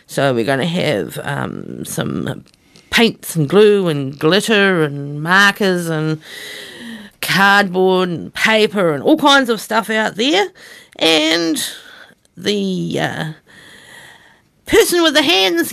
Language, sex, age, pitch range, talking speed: English, female, 50-69, 185-260 Hz, 120 wpm